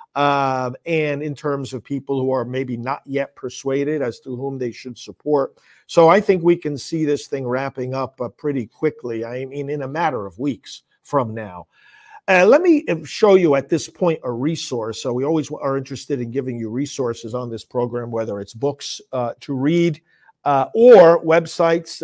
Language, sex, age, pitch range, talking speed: English, male, 50-69, 130-165 Hz, 195 wpm